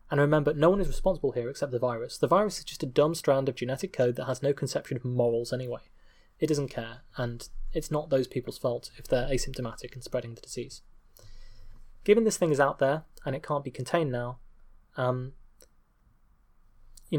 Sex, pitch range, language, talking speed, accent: male, 120-145 Hz, English, 200 wpm, British